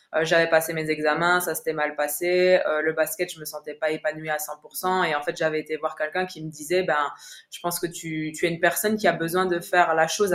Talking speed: 260 wpm